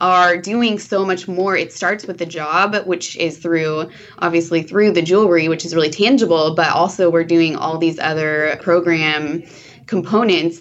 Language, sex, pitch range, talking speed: English, female, 155-180 Hz, 170 wpm